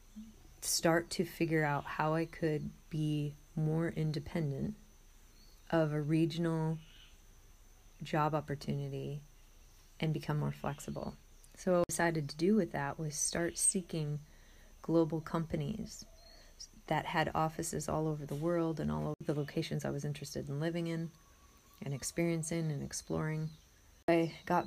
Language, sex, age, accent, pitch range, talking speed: English, female, 30-49, American, 145-170 Hz, 135 wpm